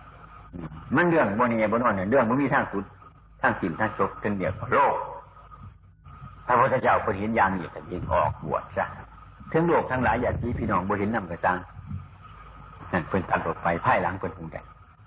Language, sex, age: Thai, male, 60-79